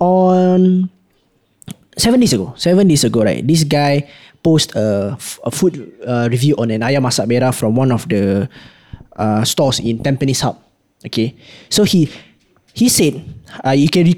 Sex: male